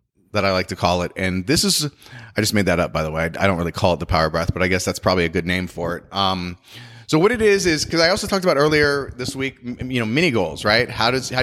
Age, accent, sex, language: 30-49, American, male, English